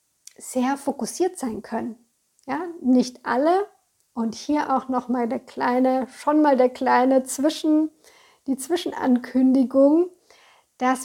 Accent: German